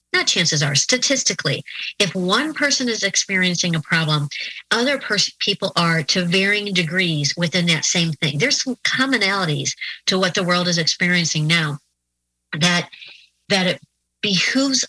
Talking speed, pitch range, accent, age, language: 145 wpm, 160-195 Hz, American, 40-59, English